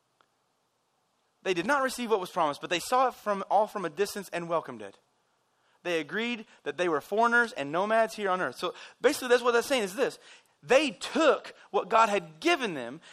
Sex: male